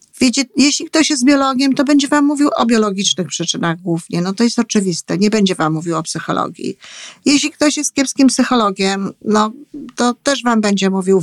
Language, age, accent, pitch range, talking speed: Polish, 50-69, native, 190-250 Hz, 175 wpm